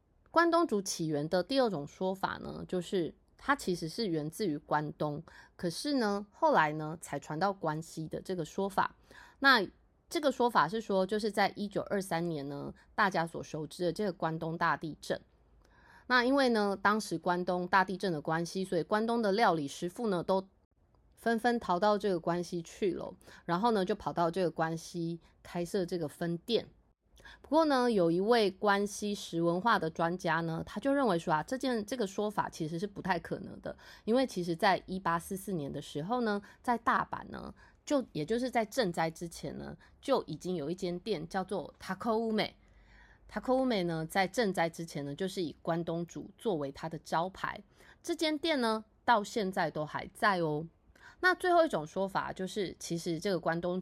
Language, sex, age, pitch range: Chinese, female, 20-39, 165-215 Hz